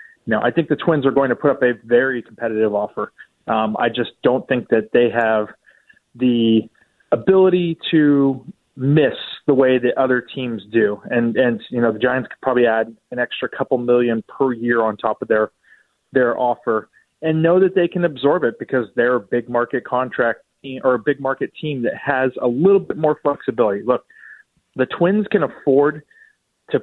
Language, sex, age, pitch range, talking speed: English, male, 30-49, 115-145 Hz, 190 wpm